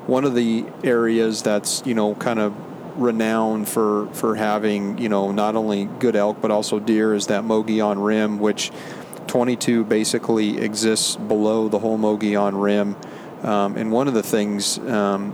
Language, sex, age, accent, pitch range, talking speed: English, male, 40-59, American, 105-115 Hz, 170 wpm